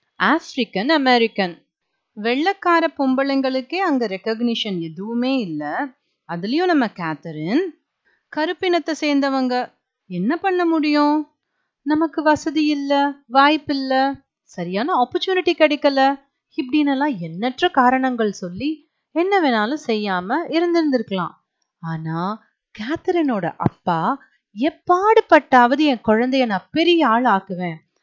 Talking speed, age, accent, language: 50 wpm, 30-49, native, Tamil